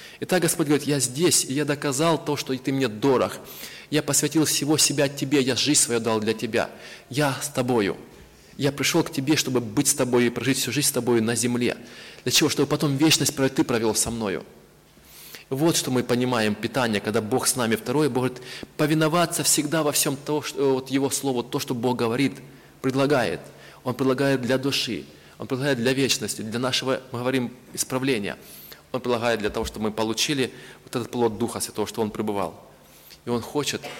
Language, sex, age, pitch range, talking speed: Russian, male, 20-39, 110-140 Hz, 185 wpm